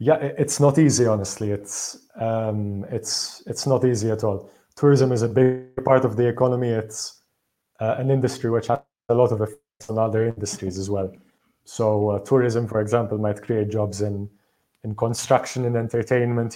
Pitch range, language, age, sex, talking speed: 105-125 Hz, Romanian, 30-49, male, 180 wpm